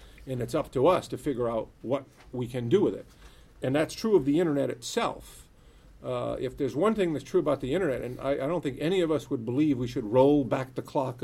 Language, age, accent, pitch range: English, 50-69, American, 120-155 Hz